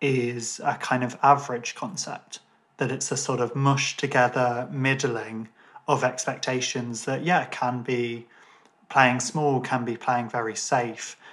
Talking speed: 145 wpm